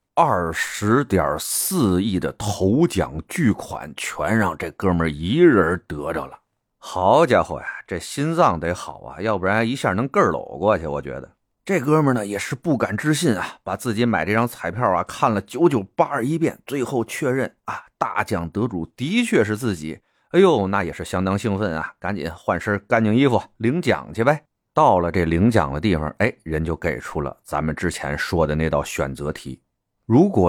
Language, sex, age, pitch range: Chinese, male, 30-49, 85-125 Hz